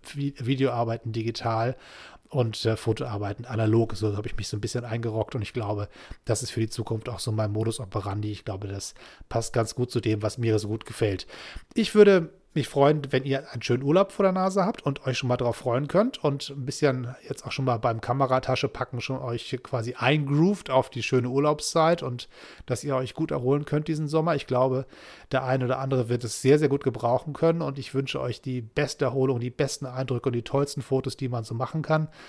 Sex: male